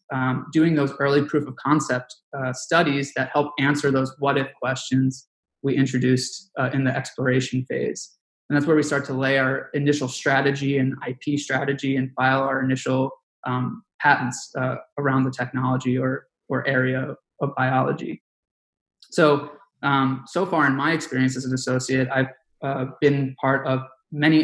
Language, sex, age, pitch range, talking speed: English, male, 20-39, 130-145 Hz, 165 wpm